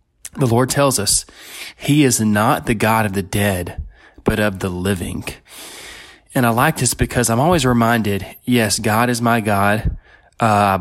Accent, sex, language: American, male, English